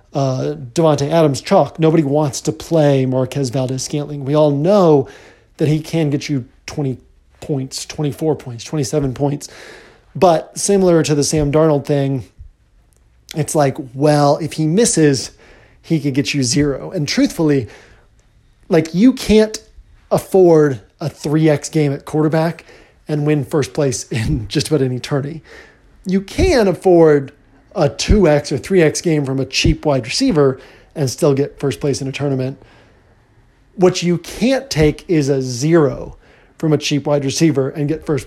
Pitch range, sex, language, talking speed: 135-160 Hz, male, English, 150 wpm